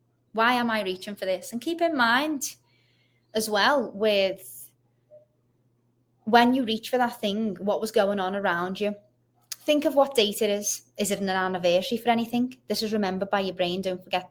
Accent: British